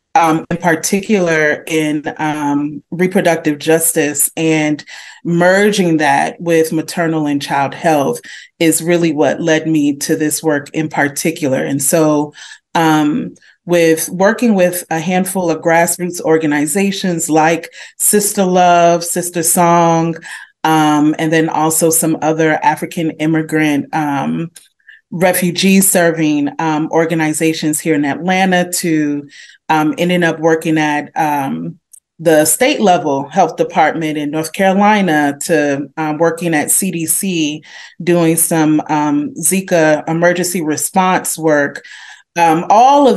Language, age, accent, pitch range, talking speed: English, 30-49, American, 155-180 Hz, 120 wpm